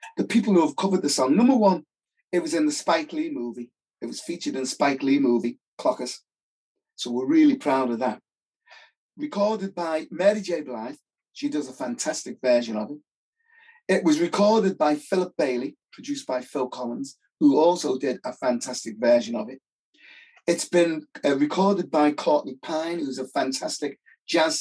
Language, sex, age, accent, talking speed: English, male, 30-49, British, 175 wpm